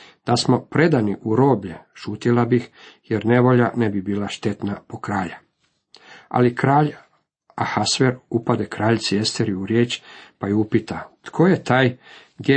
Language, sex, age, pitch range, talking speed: Croatian, male, 50-69, 105-125 Hz, 145 wpm